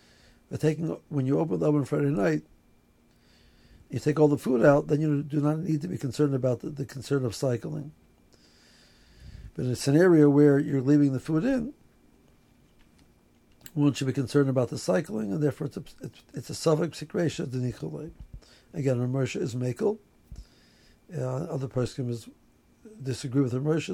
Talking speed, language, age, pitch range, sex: 175 wpm, English, 60-79, 125-150 Hz, male